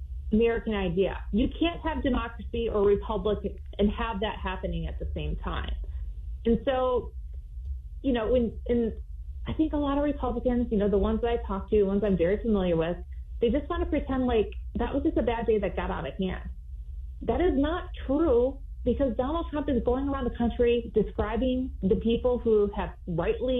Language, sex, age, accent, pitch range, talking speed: English, female, 30-49, American, 195-275 Hz, 195 wpm